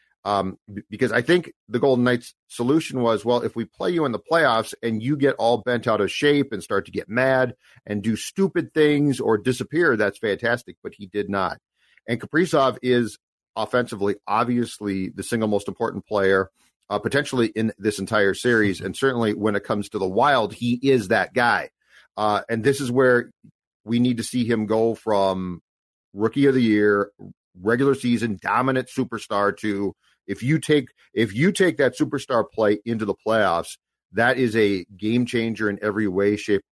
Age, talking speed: 40-59, 185 wpm